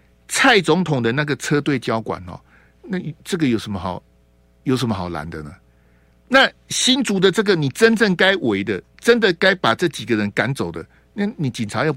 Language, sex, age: Chinese, male, 50-69